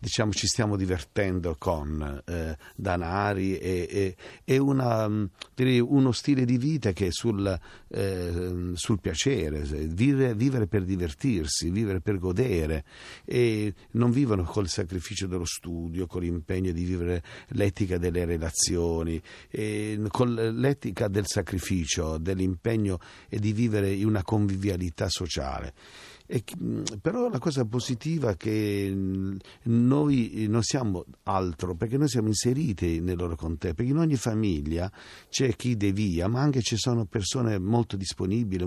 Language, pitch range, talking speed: Italian, 90-115 Hz, 135 wpm